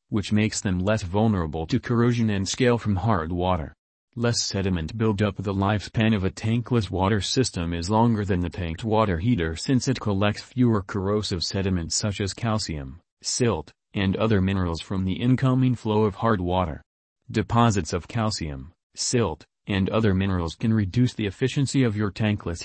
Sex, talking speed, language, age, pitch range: male, 170 wpm, English, 40-59, 95-115 Hz